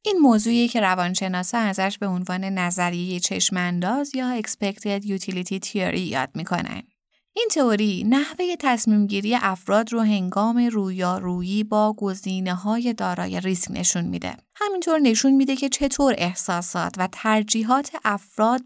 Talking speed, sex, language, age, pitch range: 125 wpm, female, Persian, 20-39, 190-250 Hz